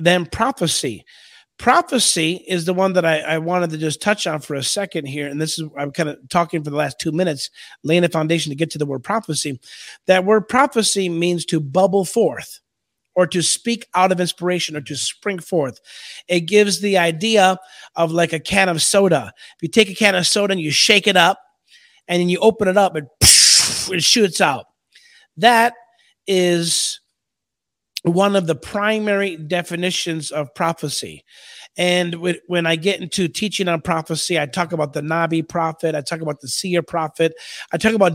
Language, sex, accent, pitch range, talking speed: English, male, American, 165-205 Hz, 190 wpm